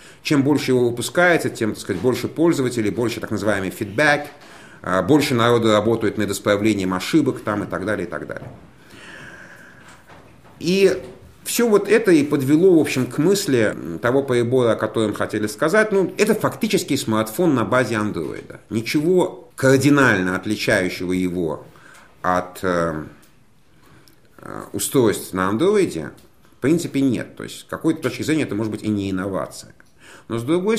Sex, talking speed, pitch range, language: male, 145 wpm, 105-145 Hz, Russian